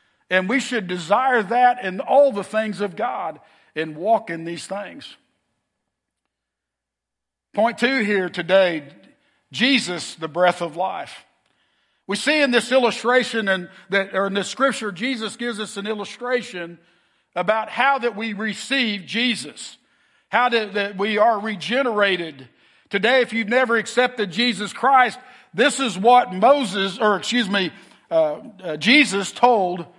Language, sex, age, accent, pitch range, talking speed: English, male, 50-69, American, 195-255 Hz, 140 wpm